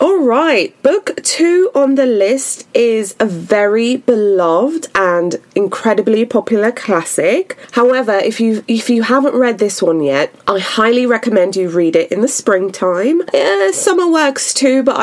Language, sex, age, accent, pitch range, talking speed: English, female, 20-39, British, 190-270 Hz, 150 wpm